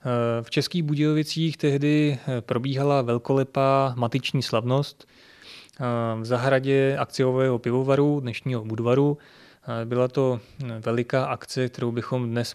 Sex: male